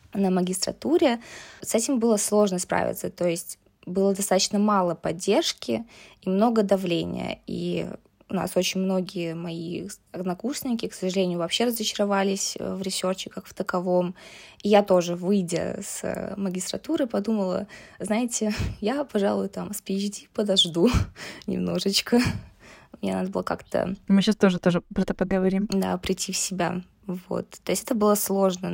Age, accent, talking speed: 20-39, native, 140 wpm